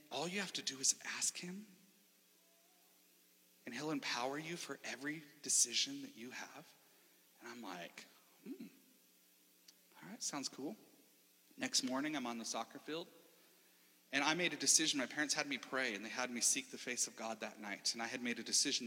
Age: 40-59